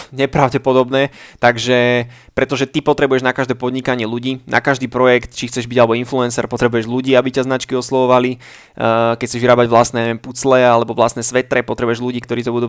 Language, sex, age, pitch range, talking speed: Slovak, male, 20-39, 120-135 Hz, 175 wpm